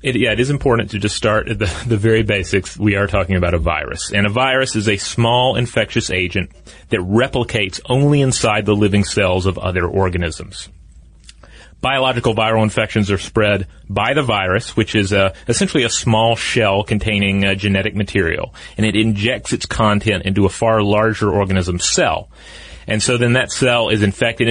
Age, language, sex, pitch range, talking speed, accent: 30-49, English, male, 90-115 Hz, 175 wpm, American